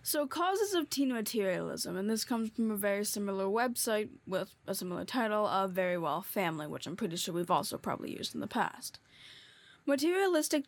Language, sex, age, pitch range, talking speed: English, female, 10-29, 200-275 Hz, 185 wpm